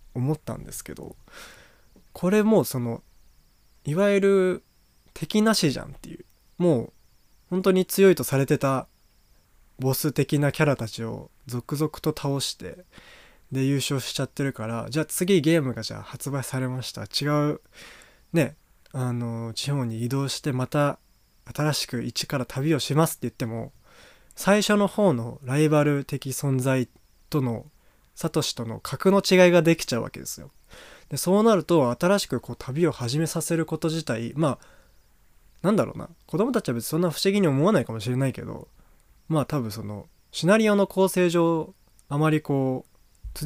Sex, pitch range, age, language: male, 120-165 Hz, 20-39, Japanese